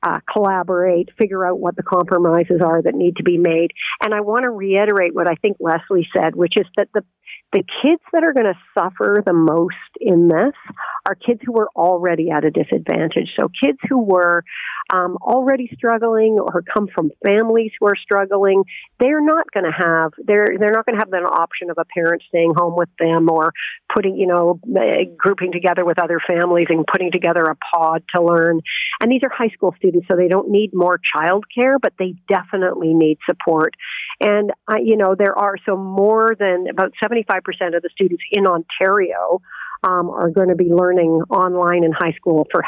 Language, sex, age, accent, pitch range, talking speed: English, female, 50-69, American, 175-220 Hz, 200 wpm